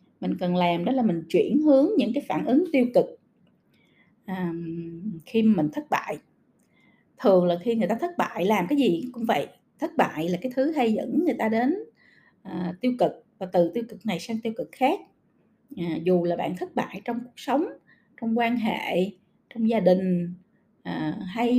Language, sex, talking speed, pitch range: Vietnamese, female, 195 wpm, 210-265 Hz